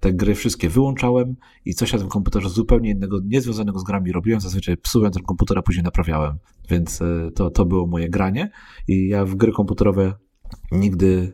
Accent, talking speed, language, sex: native, 180 wpm, Polish, male